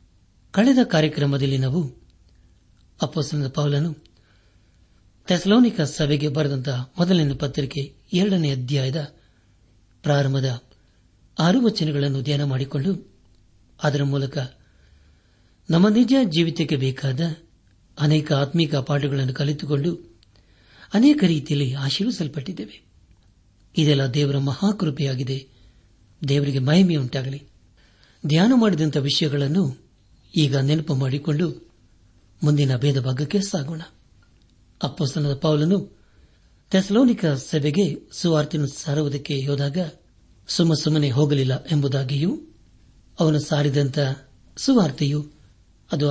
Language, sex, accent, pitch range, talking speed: Kannada, male, native, 115-160 Hz, 80 wpm